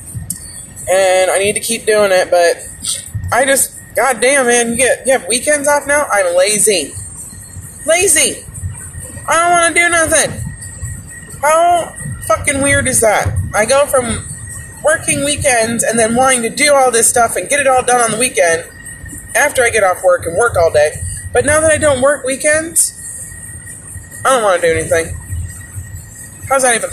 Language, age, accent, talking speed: English, 20-39, American, 175 wpm